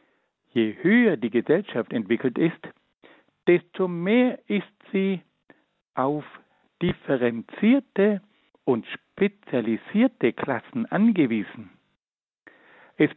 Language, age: German, 60-79